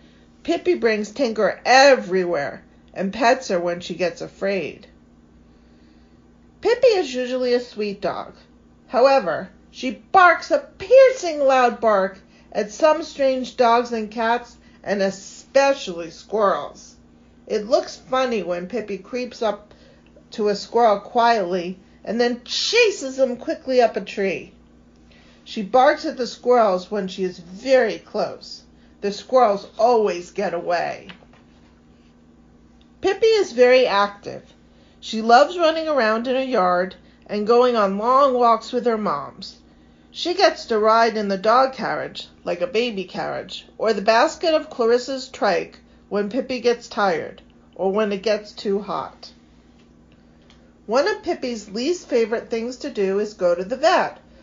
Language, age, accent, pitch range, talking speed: English, 50-69, American, 185-260 Hz, 140 wpm